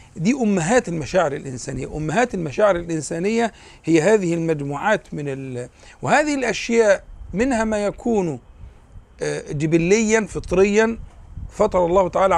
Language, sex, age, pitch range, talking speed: Arabic, male, 50-69, 145-235 Hz, 105 wpm